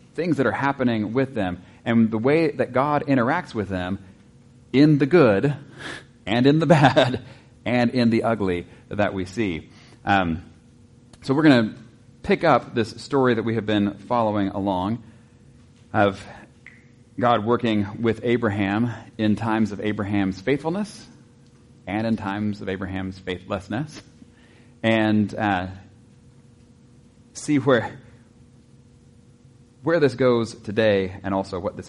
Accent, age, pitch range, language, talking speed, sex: American, 30-49, 100-120 Hz, English, 135 wpm, male